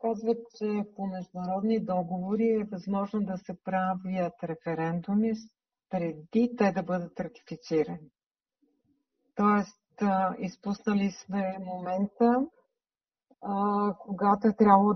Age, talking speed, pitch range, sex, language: 50-69, 90 wpm, 180-220 Hz, female, Bulgarian